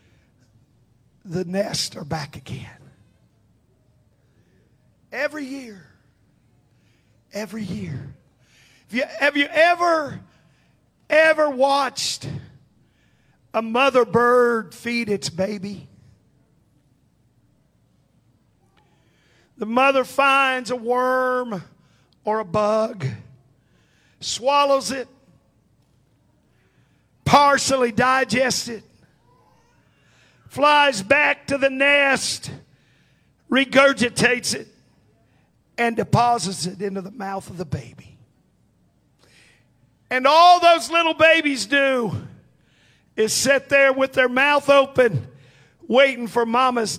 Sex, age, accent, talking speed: male, 50-69, American, 85 wpm